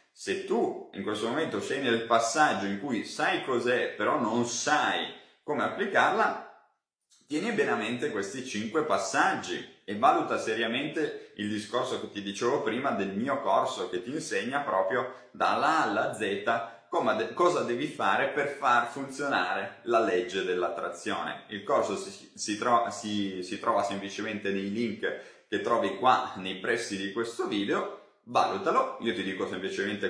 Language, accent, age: Italian, native, 30-49